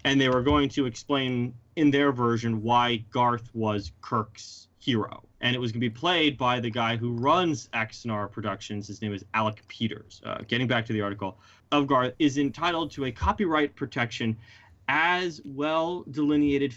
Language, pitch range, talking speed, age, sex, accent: English, 110-155 Hz, 175 wpm, 30-49, male, American